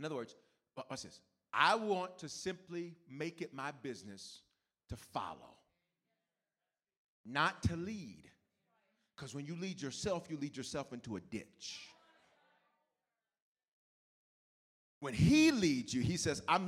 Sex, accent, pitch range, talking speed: male, American, 190-245 Hz, 120 wpm